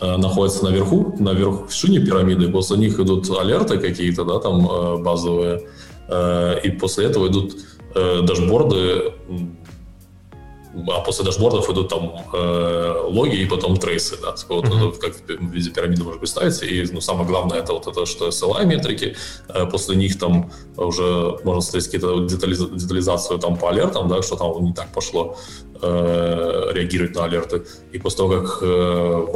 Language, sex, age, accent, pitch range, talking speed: Russian, male, 20-39, native, 85-95 Hz, 155 wpm